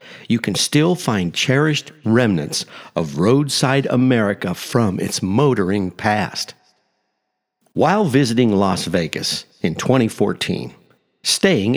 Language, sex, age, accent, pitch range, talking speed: English, male, 50-69, American, 110-160 Hz, 100 wpm